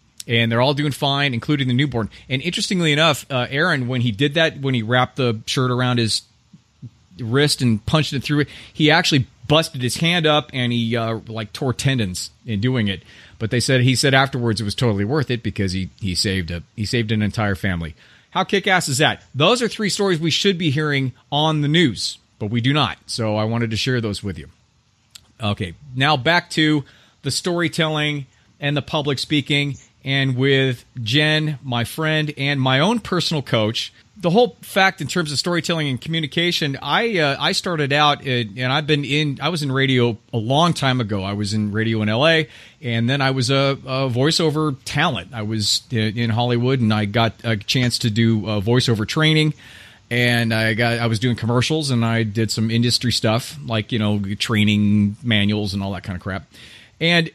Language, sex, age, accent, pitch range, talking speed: English, male, 30-49, American, 110-150 Hz, 200 wpm